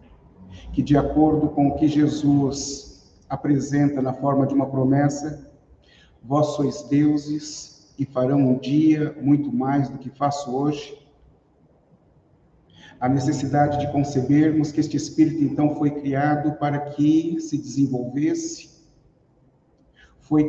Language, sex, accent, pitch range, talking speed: Portuguese, male, Brazilian, 135-150 Hz, 120 wpm